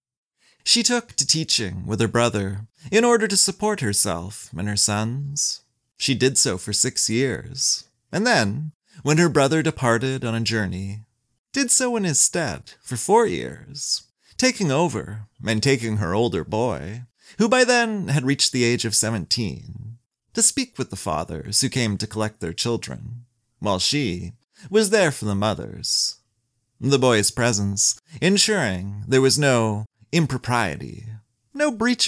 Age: 30-49